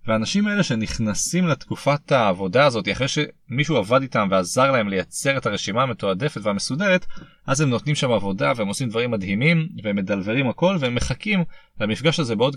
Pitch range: 110-165 Hz